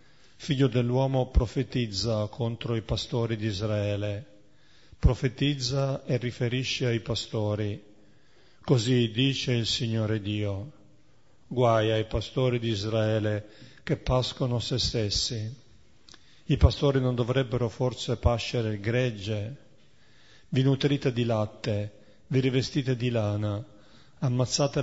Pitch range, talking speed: 110-130 Hz, 105 wpm